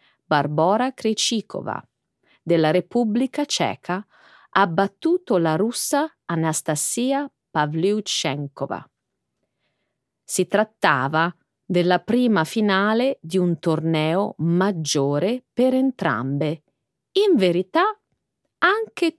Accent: native